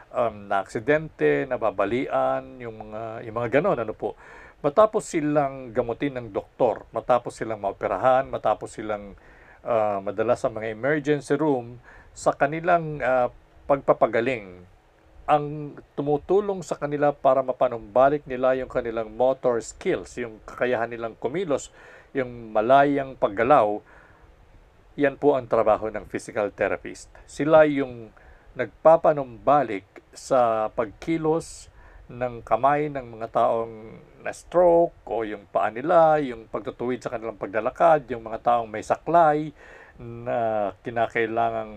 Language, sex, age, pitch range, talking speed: Filipino, male, 50-69, 110-145 Hz, 120 wpm